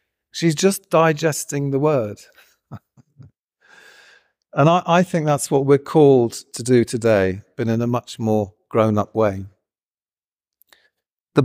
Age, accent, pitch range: 40-59, British, 115-140 Hz